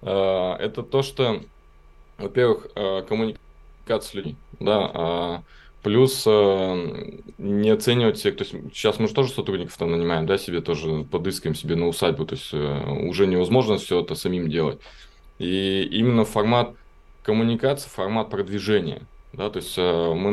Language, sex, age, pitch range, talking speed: Russian, male, 20-39, 85-115 Hz, 135 wpm